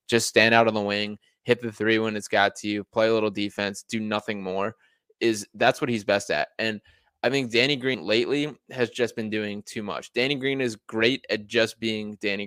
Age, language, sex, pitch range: 20-39, English, male, 105-130 Hz